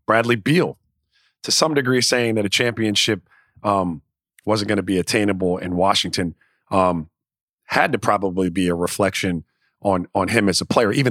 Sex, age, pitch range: male, 40-59, 105-135 Hz